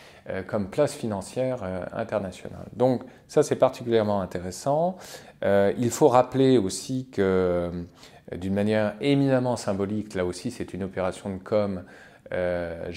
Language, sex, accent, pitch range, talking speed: French, male, French, 95-125 Hz, 140 wpm